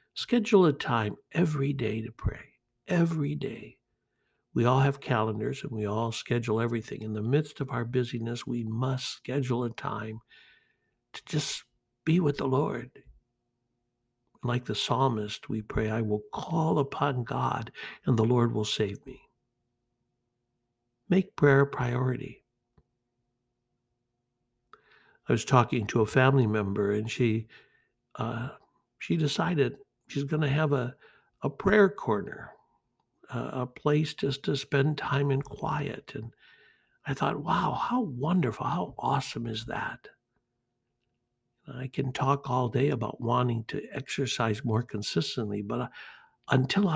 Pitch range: 115-140 Hz